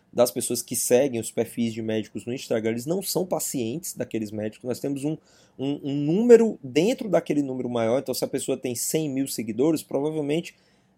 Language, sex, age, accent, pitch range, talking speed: Portuguese, male, 20-39, Brazilian, 120-165 Hz, 190 wpm